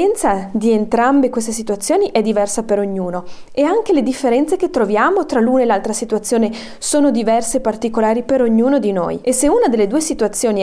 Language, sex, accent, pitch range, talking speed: Italian, female, native, 210-270 Hz, 185 wpm